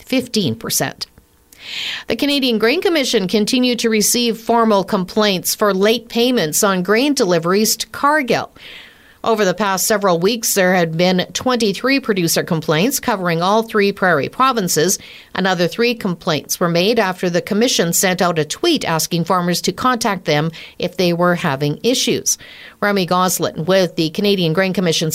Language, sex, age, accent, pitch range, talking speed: English, female, 50-69, American, 175-230 Hz, 150 wpm